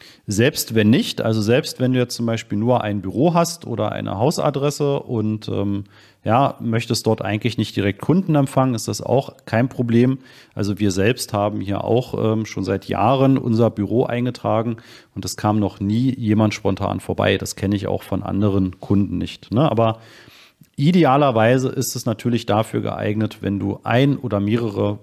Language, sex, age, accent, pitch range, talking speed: German, male, 40-59, German, 105-135 Hz, 175 wpm